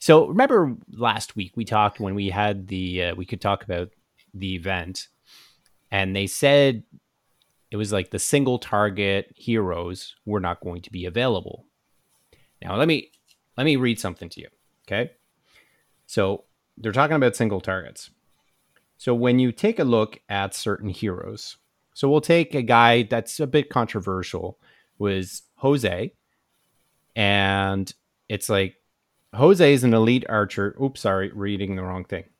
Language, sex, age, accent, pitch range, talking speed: English, male, 30-49, American, 95-125 Hz, 155 wpm